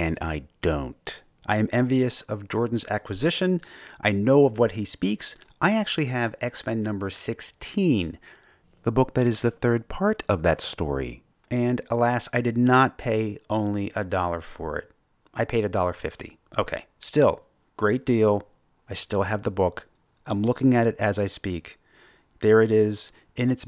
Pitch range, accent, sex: 100-125 Hz, American, male